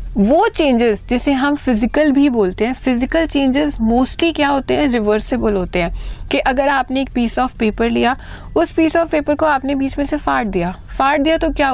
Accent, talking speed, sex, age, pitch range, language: native, 205 wpm, female, 30-49, 215-290 Hz, Hindi